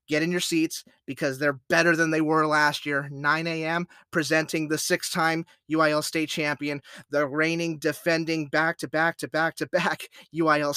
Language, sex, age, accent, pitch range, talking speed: English, male, 30-49, American, 145-175 Hz, 140 wpm